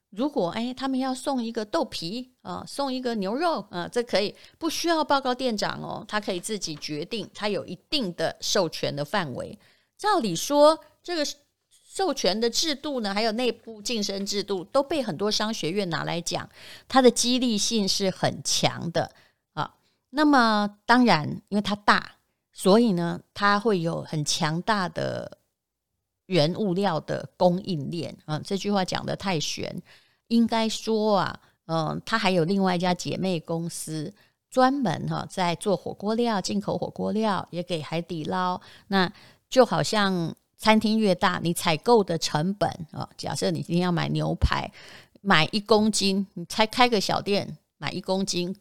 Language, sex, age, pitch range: Chinese, female, 30-49, 175-230 Hz